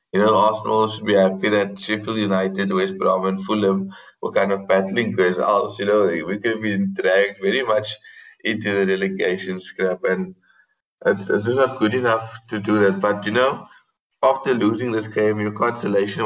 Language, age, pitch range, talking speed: English, 20-39, 95-115 Hz, 185 wpm